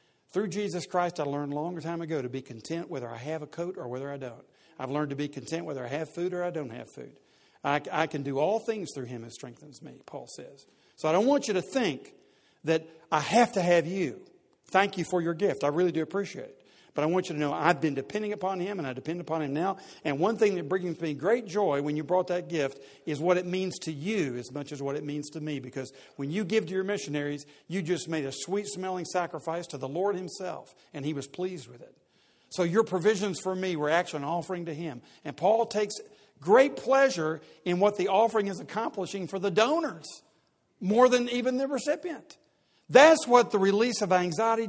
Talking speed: 235 wpm